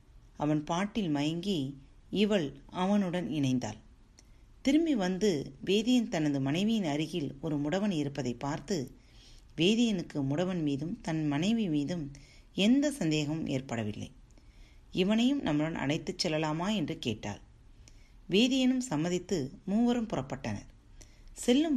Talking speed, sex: 100 wpm, female